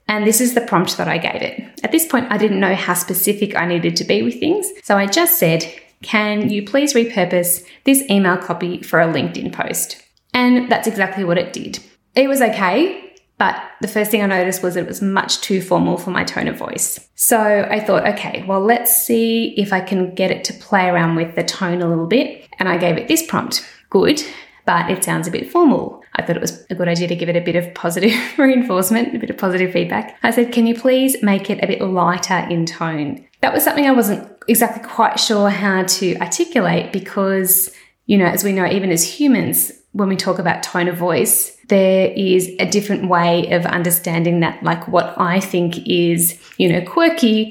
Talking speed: 220 wpm